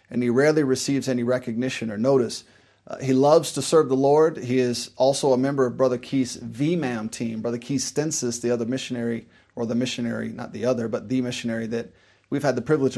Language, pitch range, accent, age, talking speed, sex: English, 115-140 Hz, American, 30-49, 210 wpm, male